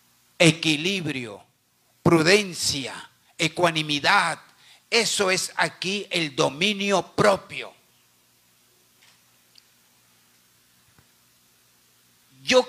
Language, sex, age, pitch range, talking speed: Spanish, male, 50-69, 125-190 Hz, 45 wpm